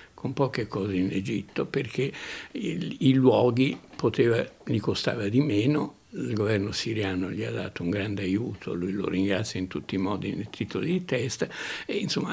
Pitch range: 100-130 Hz